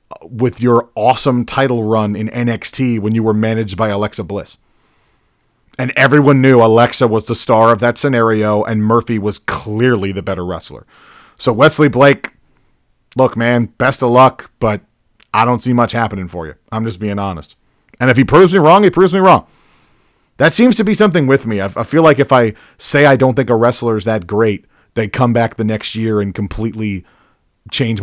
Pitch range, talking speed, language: 110-140 Hz, 195 wpm, English